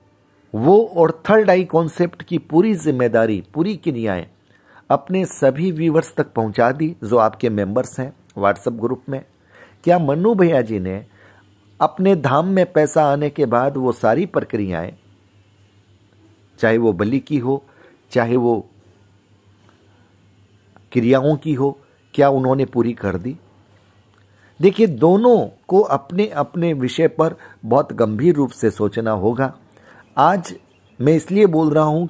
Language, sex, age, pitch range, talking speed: Hindi, male, 40-59, 105-155 Hz, 135 wpm